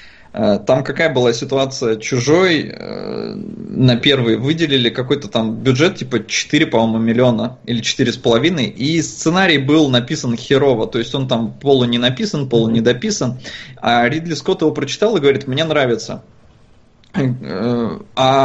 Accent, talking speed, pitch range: native, 135 wpm, 125-160 Hz